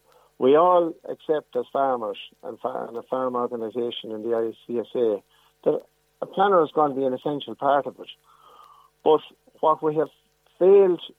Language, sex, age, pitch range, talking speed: English, male, 50-69, 130-175 Hz, 155 wpm